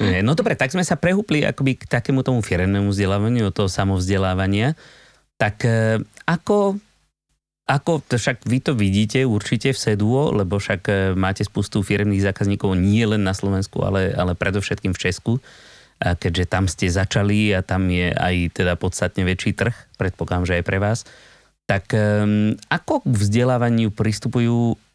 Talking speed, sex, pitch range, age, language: 145 wpm, male, 95-120 Hz, 30-49, Slovak